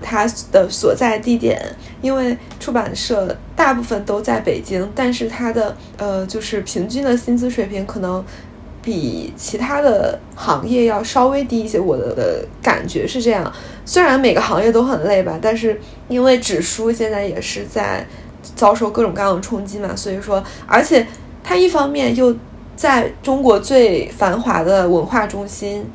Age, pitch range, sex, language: 20-39, 195-240 Hz, female, Chinese